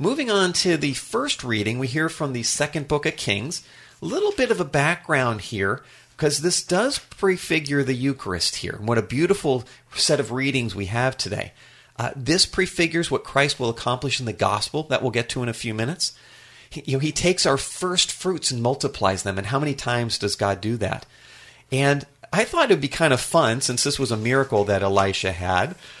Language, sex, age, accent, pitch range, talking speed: English, male, 40-59, American, 115-155 Hz, 205 wpm